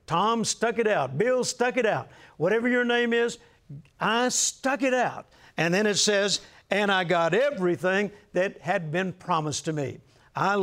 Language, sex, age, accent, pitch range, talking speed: English, male, 60-79, American, 165-210 Hz, 175 wpm